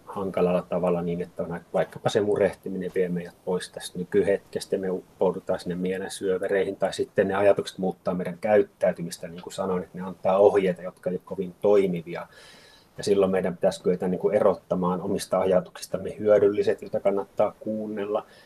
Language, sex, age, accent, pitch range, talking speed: Finnish, male, 30-49, native, 90-100 Hz, 160 wpm